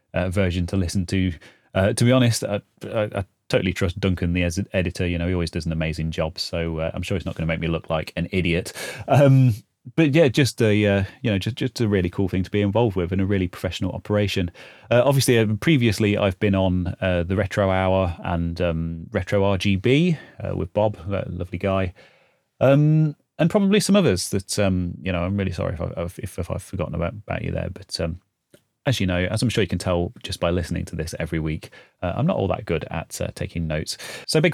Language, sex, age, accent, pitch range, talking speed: English, male, 30-49, British, 90-120 Hz, 235 wpm